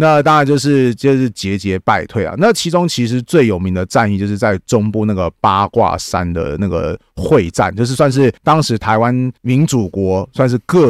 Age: 30-49